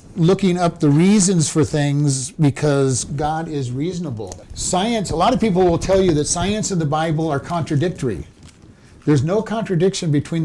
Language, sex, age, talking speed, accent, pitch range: English, male, 50-69, 165 wpm, American, 135-175 Hz